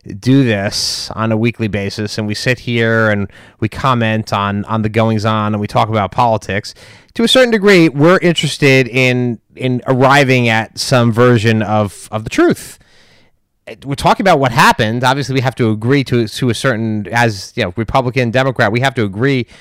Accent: American